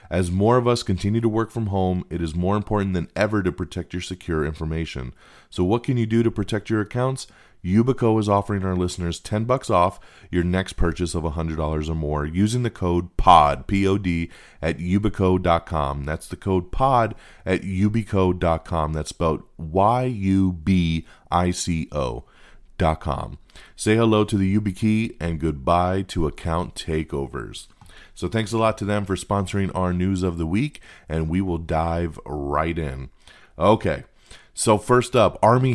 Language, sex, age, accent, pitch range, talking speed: English, male, 30-49, American, 80-105 Hz, 160 wpm